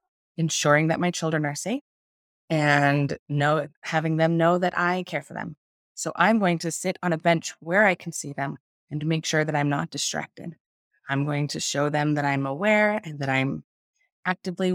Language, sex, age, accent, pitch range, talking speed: English, female, 20-39, American, 150-185 Hz, 200 wpm